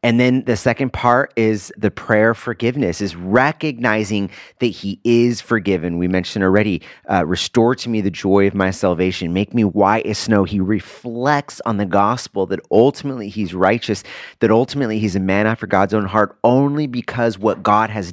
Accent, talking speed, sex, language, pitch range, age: American, 180 wpm, male, English, 100-135 Hz, 30-49